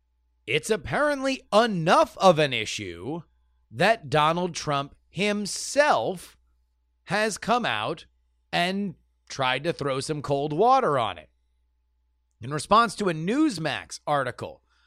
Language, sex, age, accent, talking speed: English, male, 30-49, American, 115 wpm